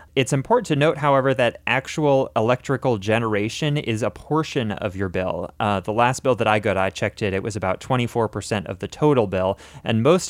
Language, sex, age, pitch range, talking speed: English, male, 20-39, 105-130 Hz, 205 wpm